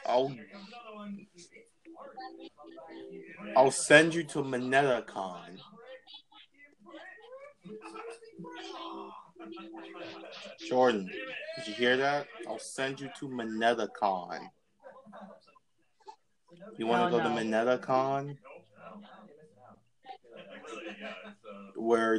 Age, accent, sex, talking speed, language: 20-39, American, male, 60 wpm, English